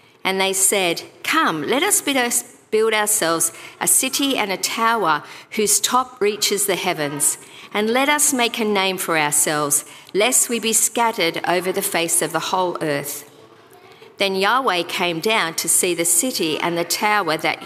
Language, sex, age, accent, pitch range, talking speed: English, female, 50-69, Australian, 165-215 Hz, 165 wpm